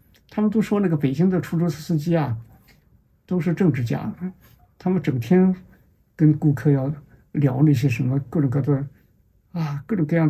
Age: 60-79